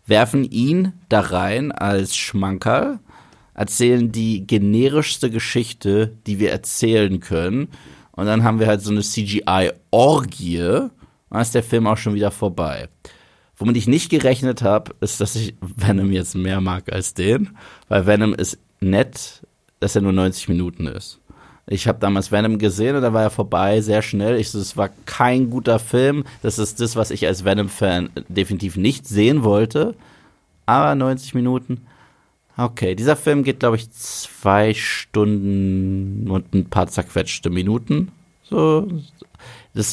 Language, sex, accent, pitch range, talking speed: German, male, German, 100-125 Hz, 150 wpm